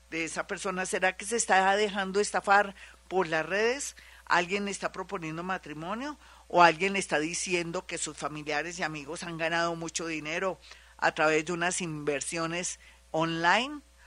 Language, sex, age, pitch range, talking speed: Spanish, female, 50-69, 165-200 Hz, 160 wpm